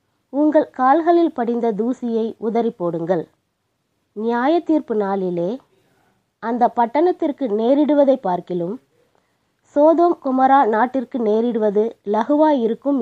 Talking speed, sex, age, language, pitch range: 80 wpm, female, 20-39, Tamil, 205-280 Hz